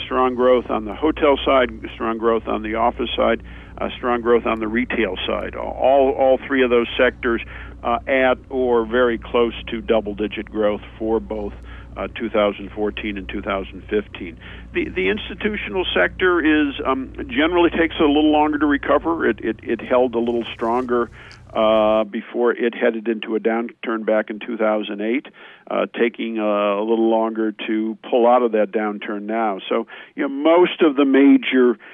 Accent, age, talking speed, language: American, 50-69, 180 wpm, English